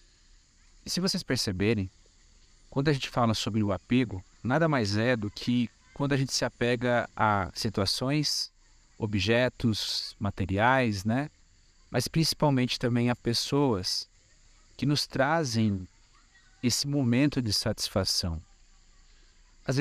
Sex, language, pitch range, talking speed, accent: male, Portuguese, 100-120 Hz, 120 wpm, Brazilian